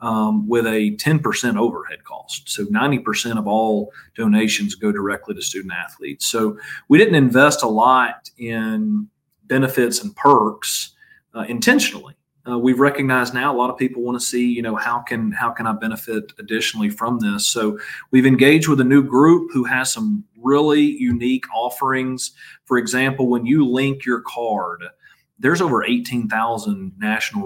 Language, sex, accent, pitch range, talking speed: English, male, American, 115-140 Hz, 160 wpm